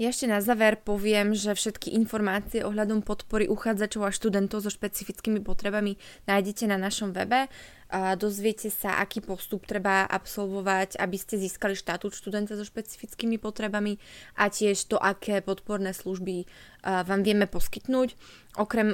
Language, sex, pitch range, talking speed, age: Slovak, female, 190-215 Hz, 145 wpm, 20-39